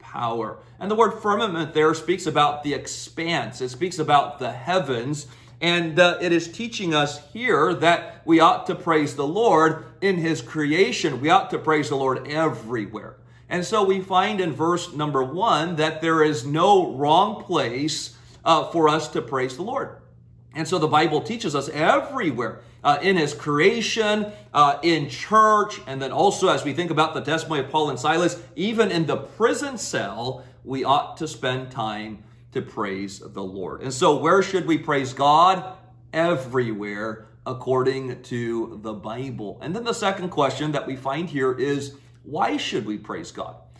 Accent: American